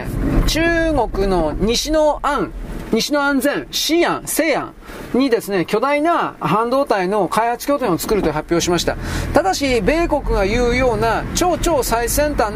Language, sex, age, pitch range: Japanese, male, 40-59, 230-315 Hz